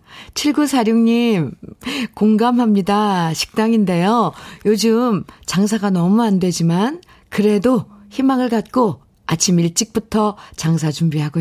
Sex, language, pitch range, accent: female, Korean, 165-220 Hz, native